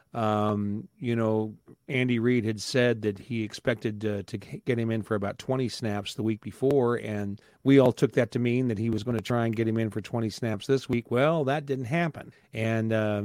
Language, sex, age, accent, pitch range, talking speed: English, male, 40-59, American, 110-130 Hz, 225 wpm